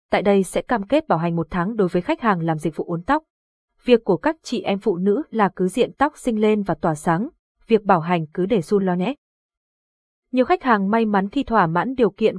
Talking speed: 250 wpm